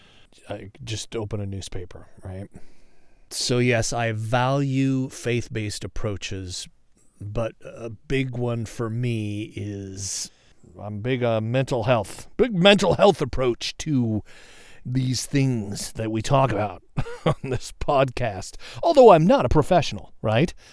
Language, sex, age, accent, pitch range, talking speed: English, male, 40-59, American, 110-145 Hz, 130 wpm